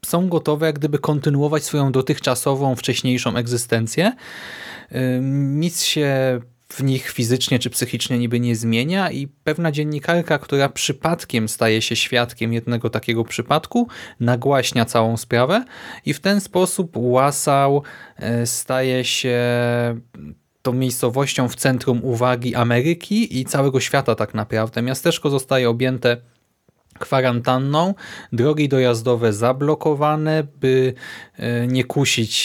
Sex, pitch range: male, 120-140 Hz